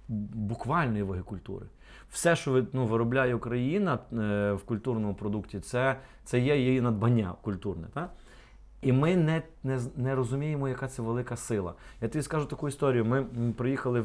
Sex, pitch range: male, 100-135 Hz